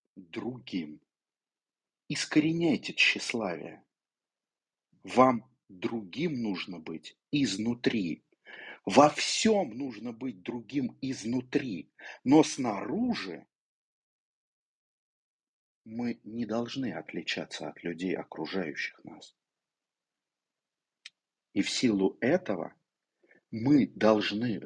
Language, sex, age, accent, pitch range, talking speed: Russian, male, 50-69, native, 100-140 Hz, 75 wpm